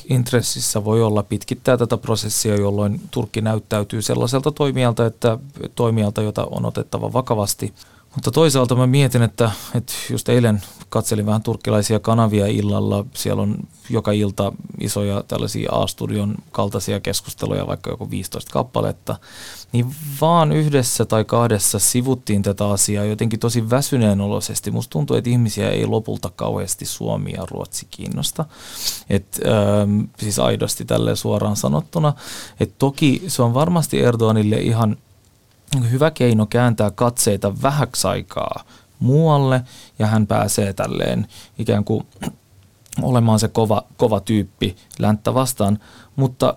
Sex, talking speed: male, 125 wpm